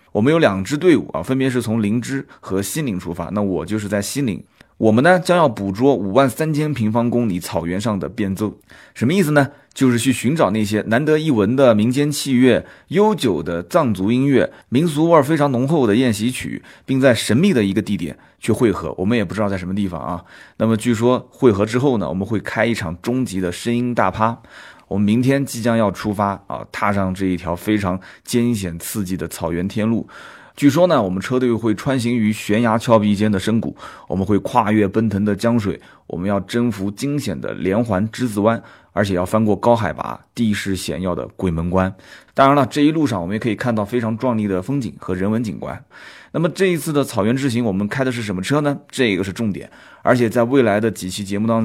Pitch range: 100-125 Hz